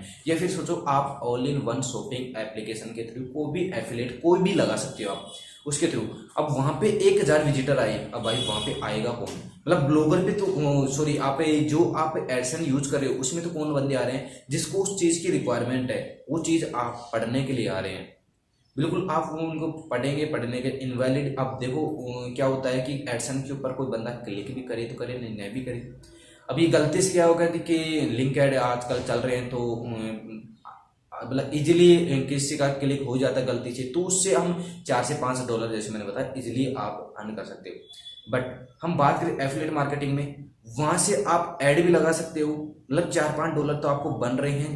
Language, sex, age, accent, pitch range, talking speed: Hindi, male, 20-39, native, 125-155 Hz, 210 wpm